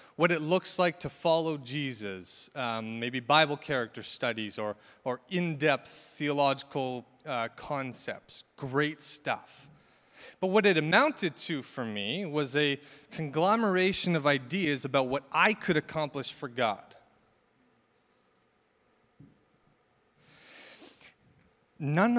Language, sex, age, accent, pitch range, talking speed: English, male, 30-49, American, 120-155 Hz, 110 wpm